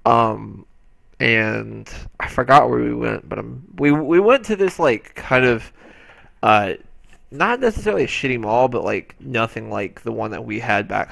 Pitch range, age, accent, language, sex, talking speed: 105-125 Hz, 20-39, American, English, male, 180 wpm